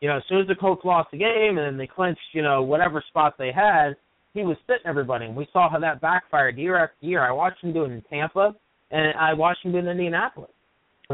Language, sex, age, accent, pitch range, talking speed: English, male, 30-49, American, 150-185 Hz, 260 wpm